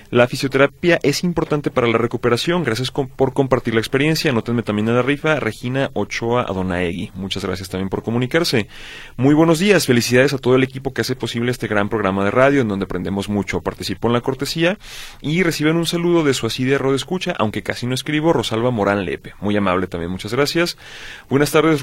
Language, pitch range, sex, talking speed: Spanish, 105-140 Hz, male, 200 wpm